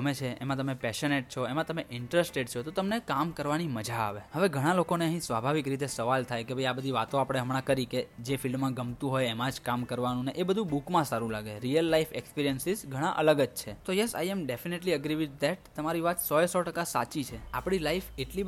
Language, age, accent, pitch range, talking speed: Gujarati, 10-29, native, 125-170 Hz, 45 wpm